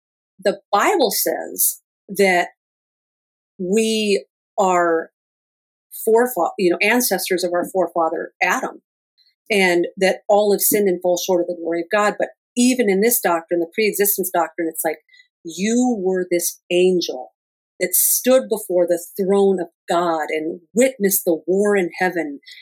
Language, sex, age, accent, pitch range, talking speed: English, female, 50-69, American, 175-215 Hz, 145 wpm